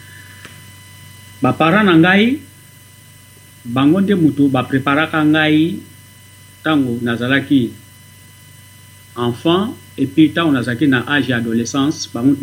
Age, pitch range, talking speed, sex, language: 50-69, 110-155 Hz, 105 wpm, male, English